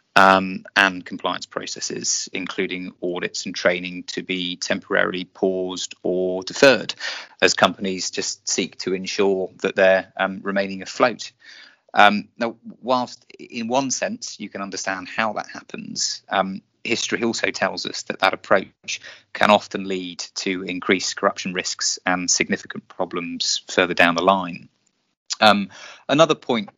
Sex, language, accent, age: male, English, British, 20-39